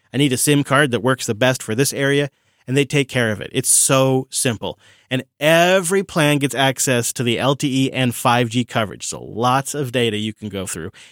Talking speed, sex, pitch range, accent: 215 wpm, male, 115-150 Hz, American